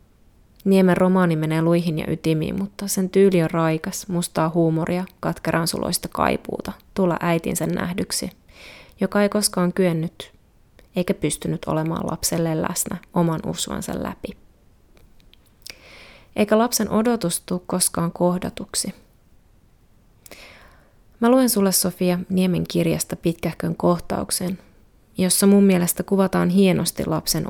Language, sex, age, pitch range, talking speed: Finnish, female, 20-39, 165-190 Hz, 110 wpm